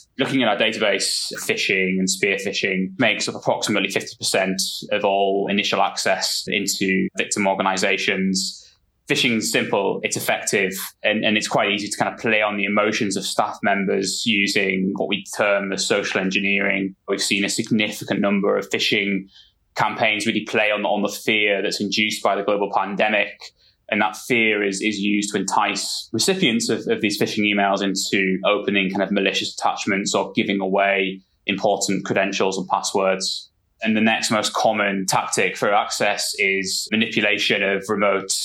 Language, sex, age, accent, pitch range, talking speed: English, male, 20-39, British, 95-105 Hz, 165 wpm